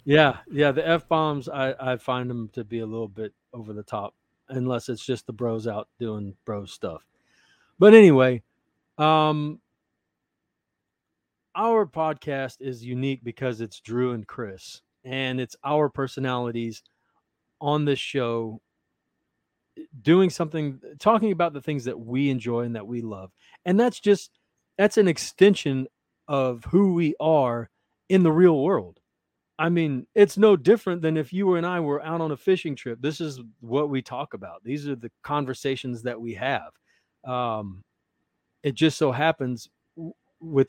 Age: 30-49